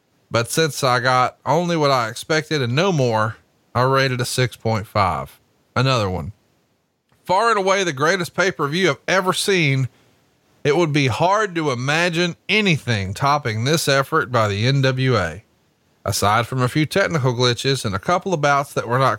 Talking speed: 165 wpm